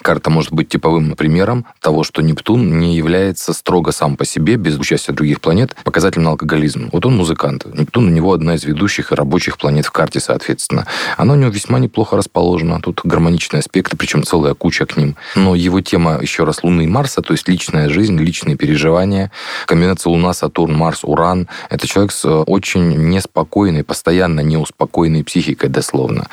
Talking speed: 180 wpm